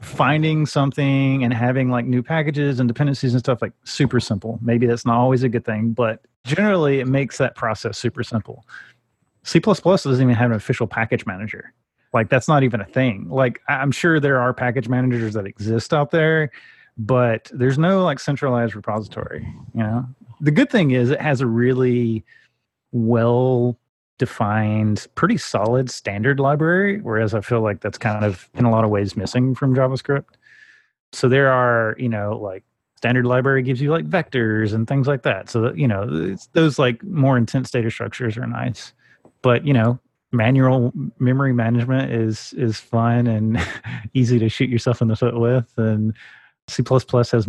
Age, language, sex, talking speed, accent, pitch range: 30-49, English, male, 175 wpm, American, 115-135 Hz